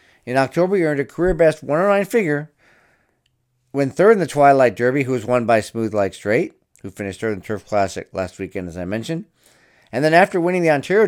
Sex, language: male, English